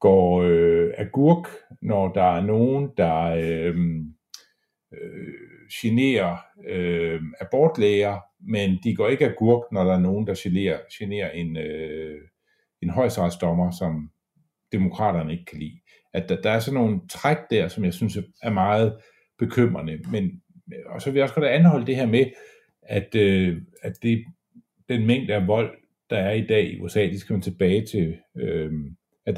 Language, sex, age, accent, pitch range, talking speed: Danish, male, 50-69, native, 85-115 Hz, 145 wpm